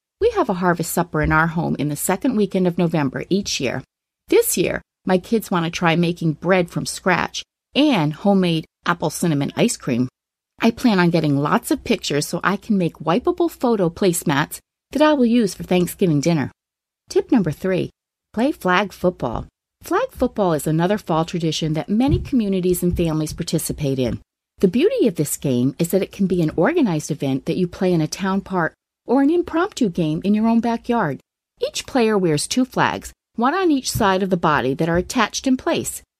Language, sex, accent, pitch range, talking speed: English, female, American, 165-230 Hz, 195 wpm